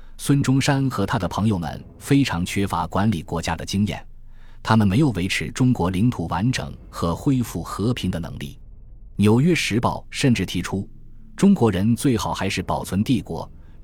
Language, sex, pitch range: Chinese, male, 90-115 Hz